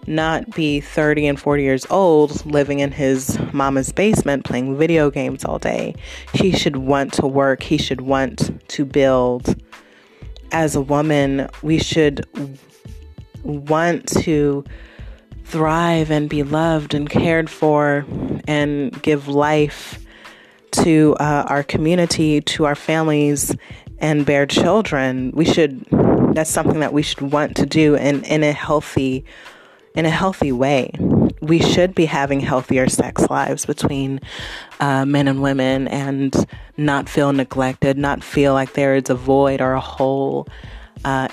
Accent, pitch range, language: American, 135-150 Hz, English